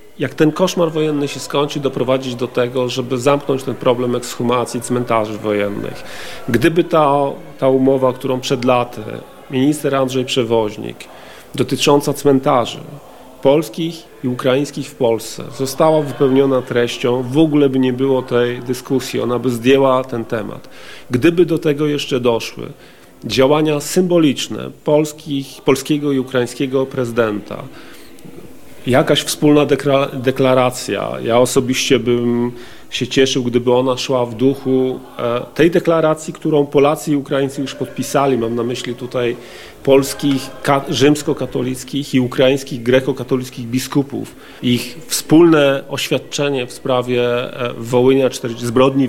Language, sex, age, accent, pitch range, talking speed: Polish, male, 40-59, native, 125-145 Hz, 120 wpm